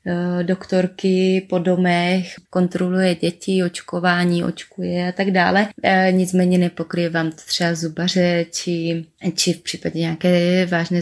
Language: Czech